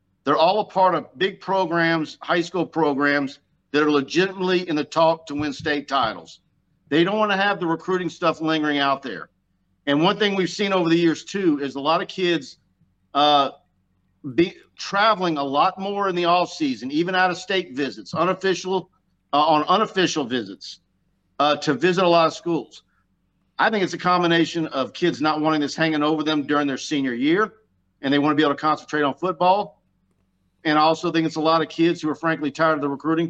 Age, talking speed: 50-69, 200 wpm